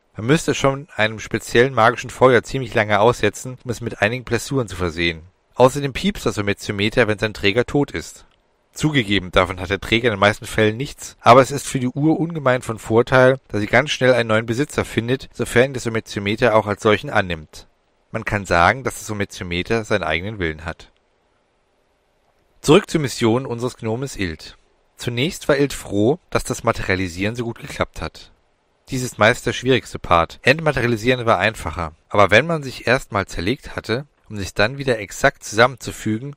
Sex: male